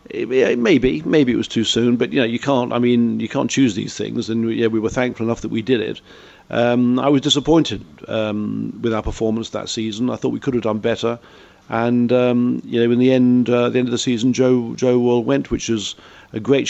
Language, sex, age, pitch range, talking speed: English, male, 50-69, 110-125 Hz, 240 wpm